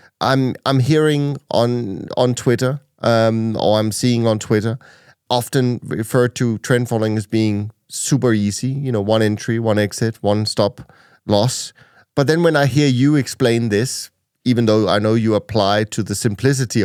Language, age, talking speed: English, 30-49, 165 wpm